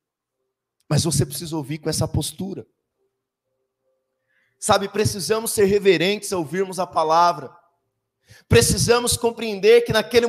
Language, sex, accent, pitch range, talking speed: Portuguese, male, Brazilian, 175-260 Hz, 110 wpm